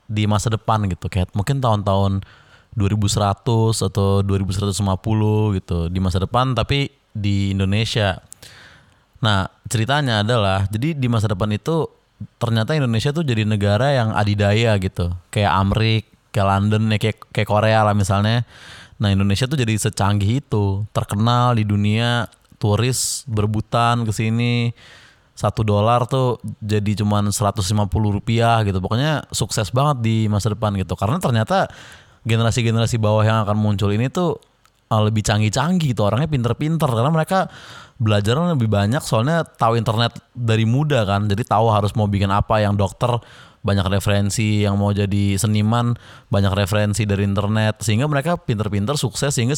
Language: Indonesian